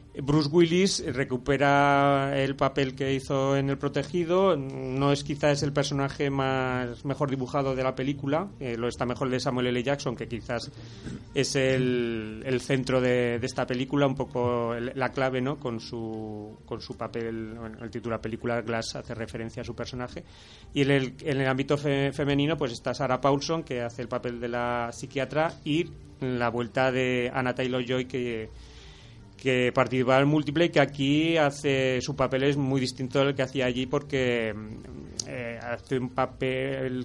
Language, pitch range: Spanish, 120-140 Hz